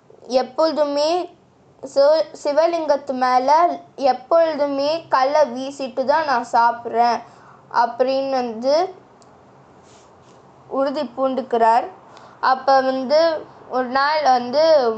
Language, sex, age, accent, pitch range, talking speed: Tamil, female, 20-39, native, 245-305 Hz, 75 wpm